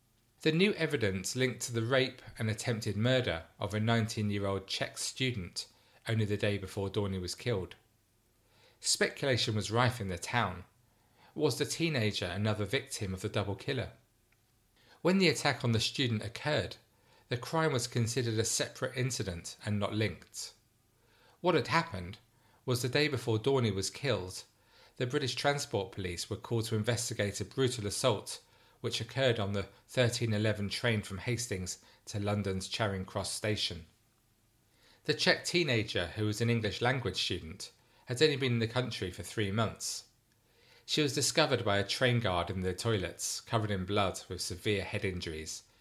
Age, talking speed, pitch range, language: 40-59, 160 wpm, 100-125 Hz, English